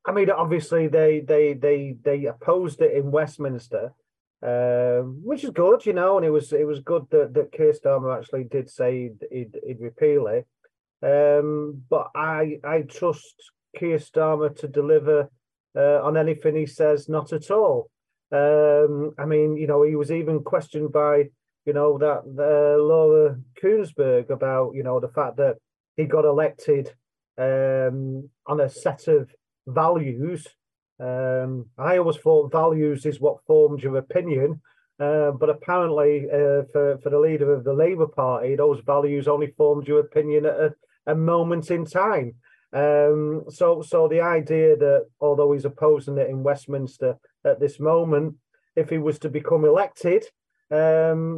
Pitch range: 145-160 Hz